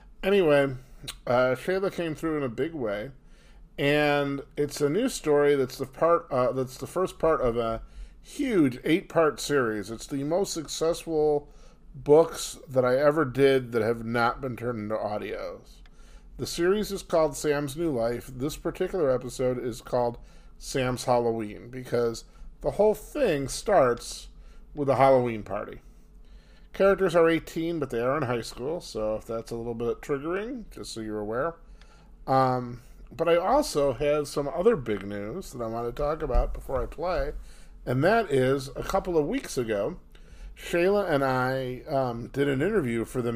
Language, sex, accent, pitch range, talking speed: English, male, American, 125-160 Hz, 165 wpm